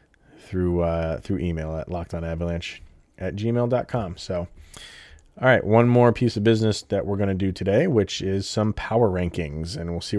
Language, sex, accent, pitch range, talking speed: English, male, American, 85-110 Hz, 175 wpm